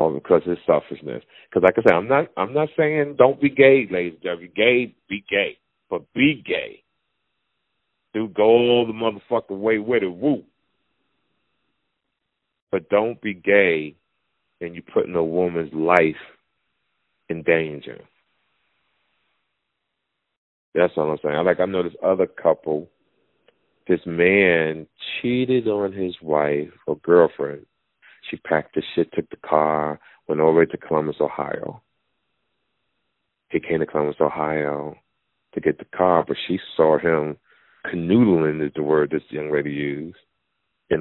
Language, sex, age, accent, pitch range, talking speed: English, male, 40-59, American, 75-105 Hz, 150 wpm